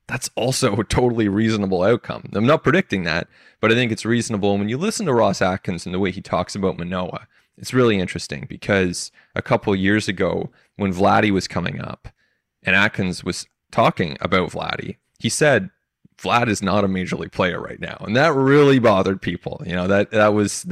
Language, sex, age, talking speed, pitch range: English, male, 20-39, 200 wpm, 95-115 Hz